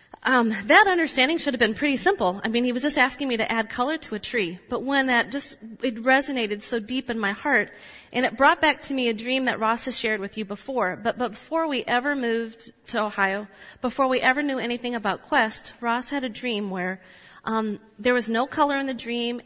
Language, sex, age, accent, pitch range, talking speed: English, female, 30-49, American, 210-255 Hz, 230 wpm